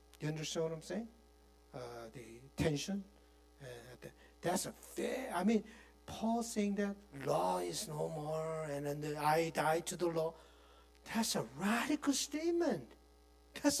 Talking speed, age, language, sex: 145 wpm, 60-79, English, male